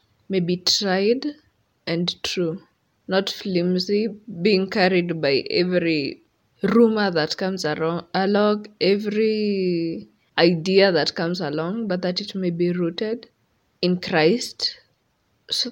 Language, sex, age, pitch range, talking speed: English, female, 20-39, 175-210 Hz, 115 wpm